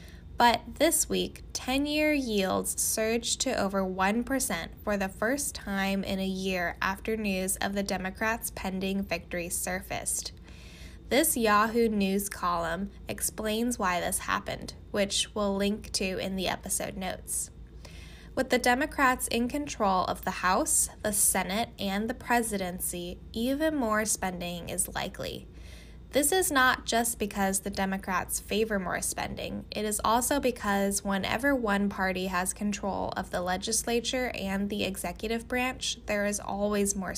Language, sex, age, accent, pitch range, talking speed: English, female, 10-29, American, 185-230 Hz, 140 wpm